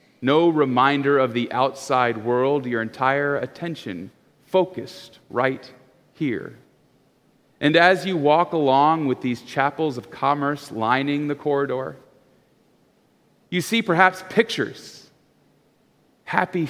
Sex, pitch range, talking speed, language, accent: male, 120-155 Hz, 110 wpm, English, American